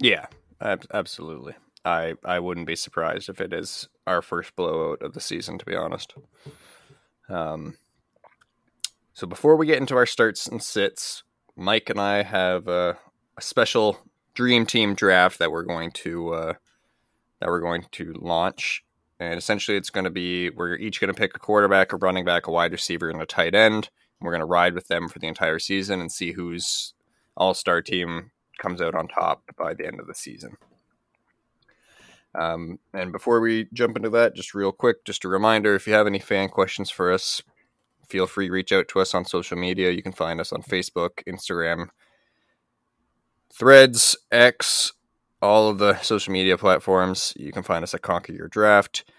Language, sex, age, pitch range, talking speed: English, male, 20-39, 90-110 Hz, 185 wpm